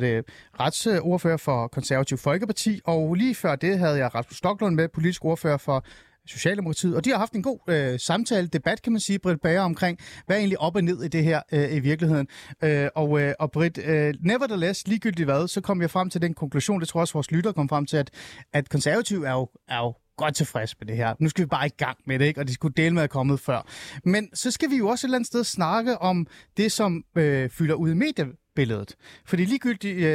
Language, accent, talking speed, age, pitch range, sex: Danish, native, 235 wpm, 30-49, 145-190 Hz, male